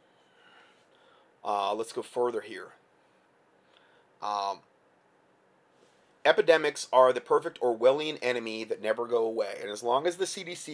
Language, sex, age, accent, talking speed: English, male, 30-49, American, 125 wpm